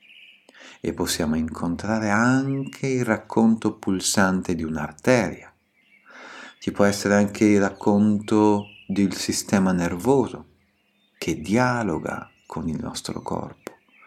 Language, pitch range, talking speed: Italian, 90-110 Hz, 100 wpm